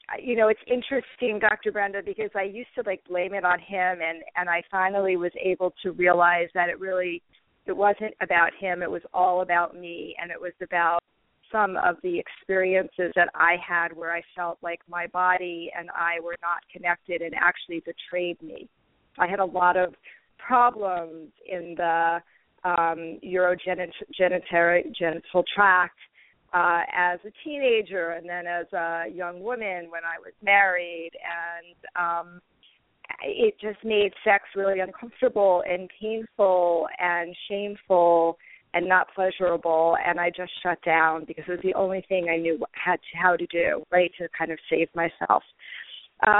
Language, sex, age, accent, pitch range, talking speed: English, female, 40-59, American, 170-195 Hz, 160 wpm